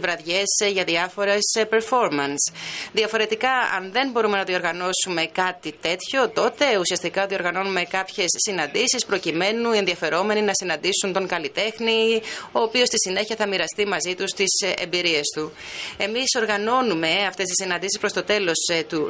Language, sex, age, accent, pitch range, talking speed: French, female, 30-49, Greek, 175-215 Hz, 135 wpm